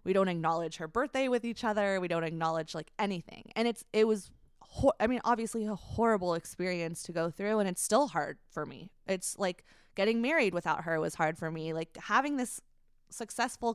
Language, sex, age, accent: English, female, 20-39, American